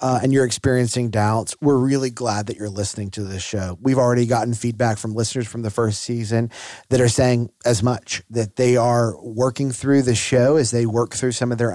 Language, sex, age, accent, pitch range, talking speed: English, male, 30-49, American, 105-125 Hz, 220 wpm